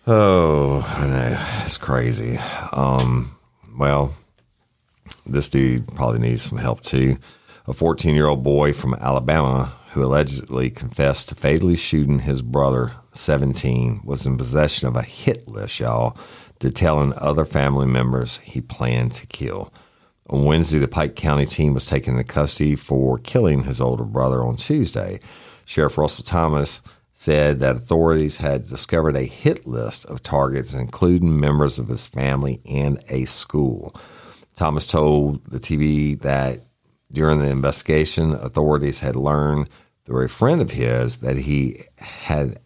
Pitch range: 65-80 Hz